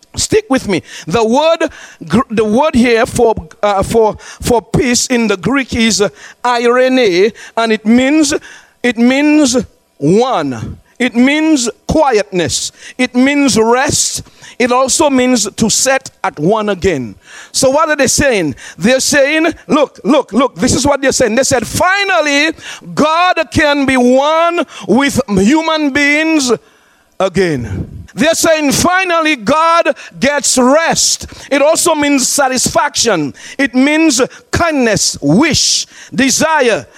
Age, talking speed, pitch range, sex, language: 50-69, 130 wpm, 210-290 Hz, male, English